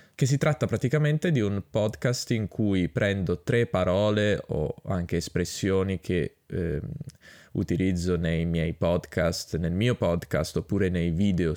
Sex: male